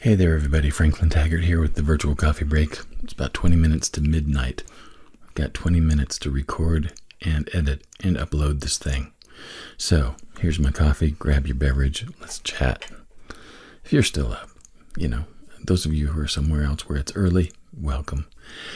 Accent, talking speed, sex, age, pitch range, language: American, 175 wpm, male, 50-69, 75-90 Hz, English